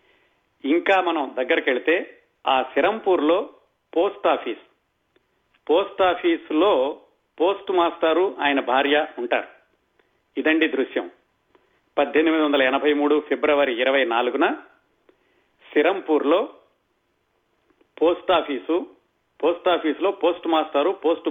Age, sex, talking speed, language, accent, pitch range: 40-59, male, 85 wpm, Telugu, native, 155-230 Hz